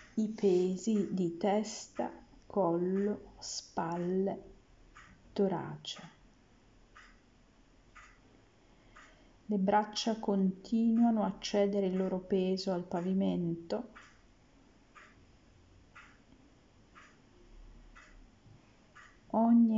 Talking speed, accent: 55 wpm, native